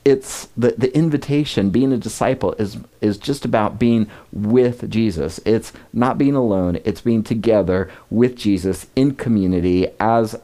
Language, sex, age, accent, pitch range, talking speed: English, male, 40-59, American, 90-115 Hz, 150 wpm